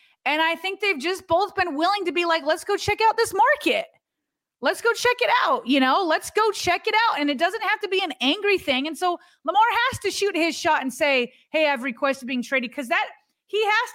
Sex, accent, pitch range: female, American, 255-360 Hz